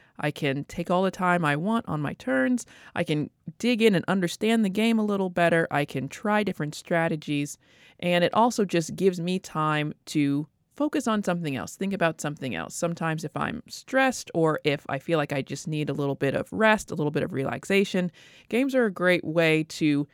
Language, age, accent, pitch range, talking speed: English, 20-39, American, 155-210 Hz, 210 wpm